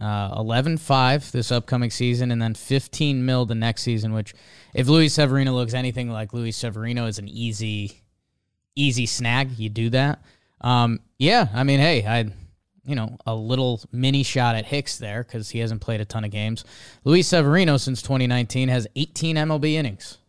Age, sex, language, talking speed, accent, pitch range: 20-39, male, English, 175 wpm, American, 110-135 Hz